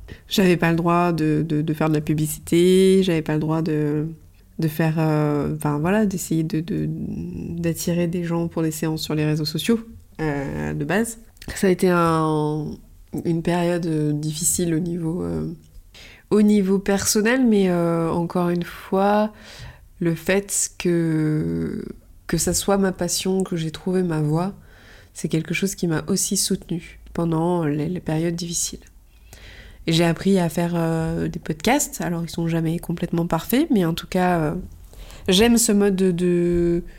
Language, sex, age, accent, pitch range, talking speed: French, female, 20-39, French, 155-185 Hz, 170 wpm